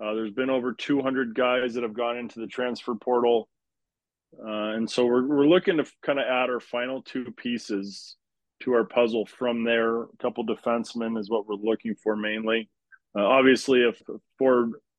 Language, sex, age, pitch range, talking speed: English, male, 20-39, 115-130 Hz, 190 wpm